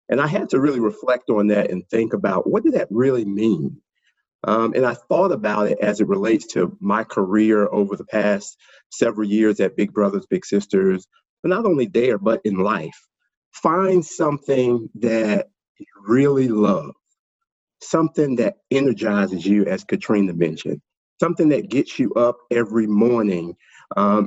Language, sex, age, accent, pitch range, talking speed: English, male, 50-69, American, 105-150 Hz, 165 wpm